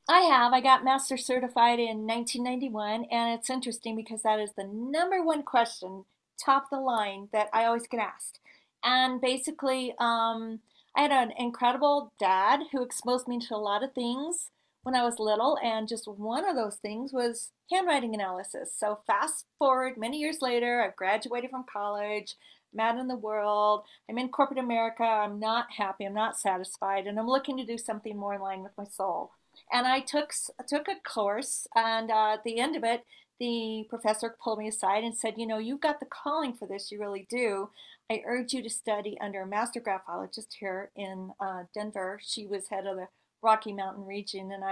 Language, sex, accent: English, female, American